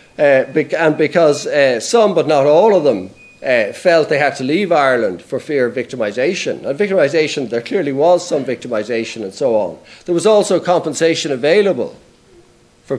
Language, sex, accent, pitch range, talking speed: English, male, Irish, 135-175 Hz, 170 wpm